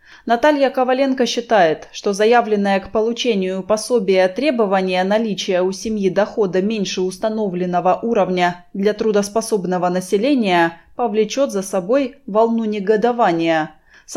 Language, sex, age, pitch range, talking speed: Russian, female, 20-39, 185-245 Hz, 105 wpm